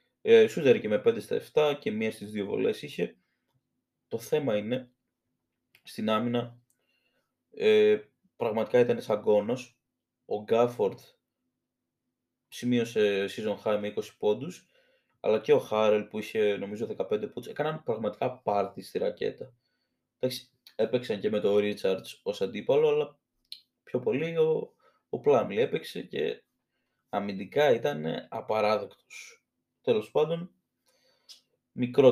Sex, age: male, 20-39